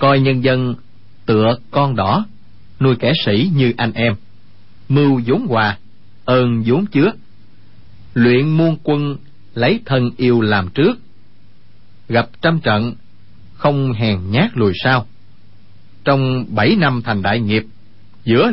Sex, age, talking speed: male, 30-49, 135 wpm